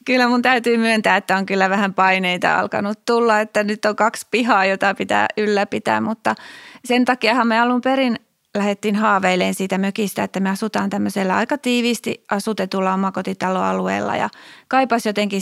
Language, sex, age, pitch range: Finnish, female, 30-49, 185-230 Hz